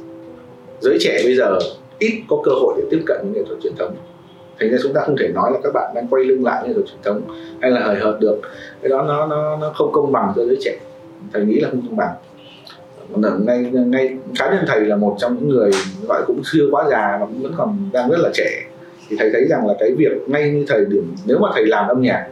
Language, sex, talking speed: Vietnamese, male, 260 wpm